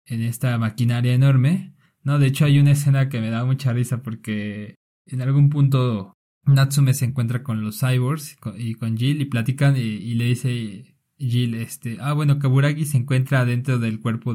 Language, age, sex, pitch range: Spanish, 20-39, male, 115-145 Hz